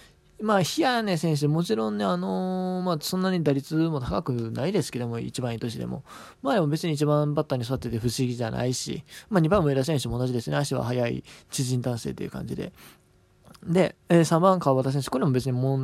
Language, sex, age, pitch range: Japanese, male, 20-39, 130-180 Hz